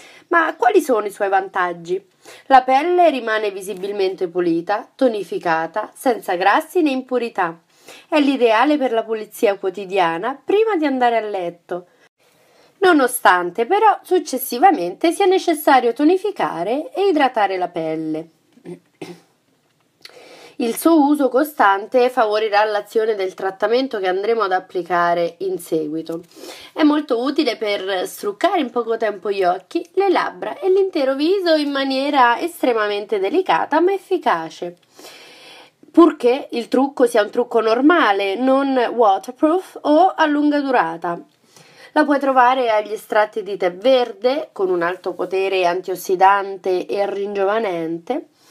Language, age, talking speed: Italian, 30-49, 125 wpm